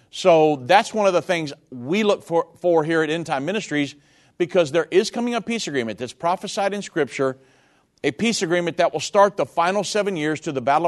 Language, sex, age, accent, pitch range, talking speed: English, male, 50-69, American, 150-185 Hz, 215 wpm